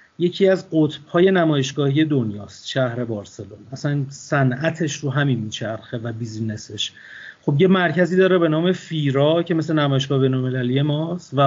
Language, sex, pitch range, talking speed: Persian, male, 135-170 Hz, 145 wpm